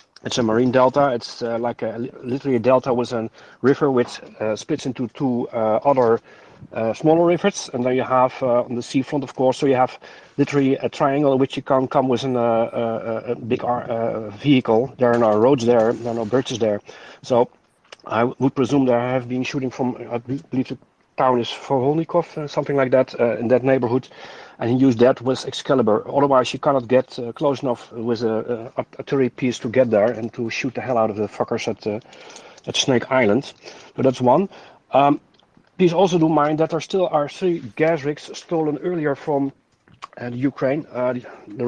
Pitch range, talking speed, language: 120-140 Hz, 200 wpm, English